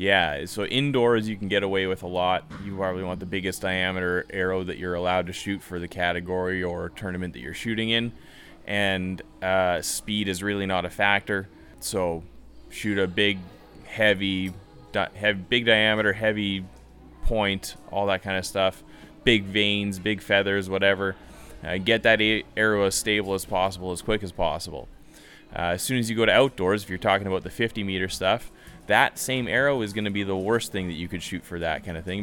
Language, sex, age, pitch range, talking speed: English, male, 20-39, 90-105 Hz, 195 wpm